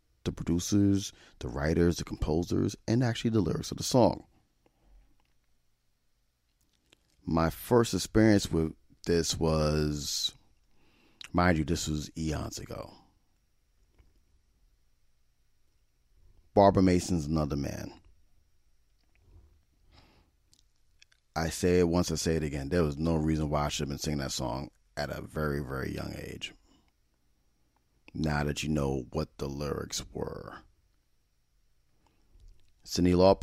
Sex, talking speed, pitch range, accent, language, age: male, 115 wpm, 70-90 Hz, American, English, 40-59